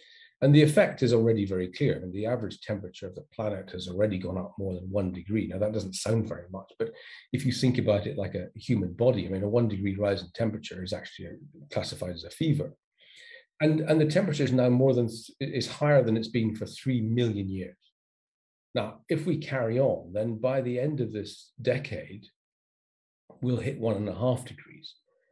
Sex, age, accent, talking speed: male, 40-59, British, 215 wpm